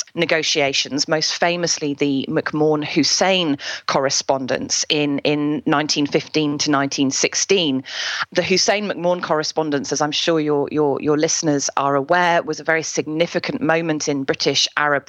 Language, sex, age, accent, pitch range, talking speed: English, female, 30-49, British, 140-170 Hz, 130 wpm